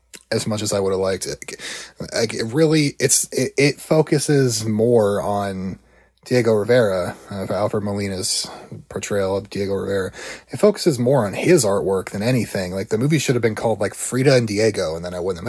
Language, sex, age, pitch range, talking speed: English, male, 30-49, 100-120 Hz, 195 wpm